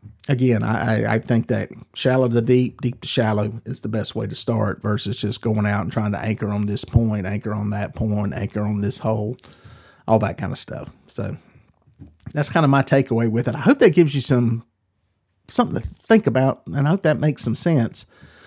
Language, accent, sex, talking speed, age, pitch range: English, American, male, 220 wpm, 40-59, 110-135 Hz